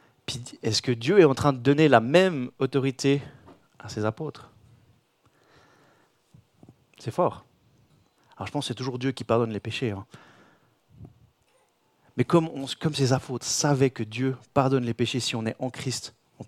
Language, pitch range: French, 115-140 Hz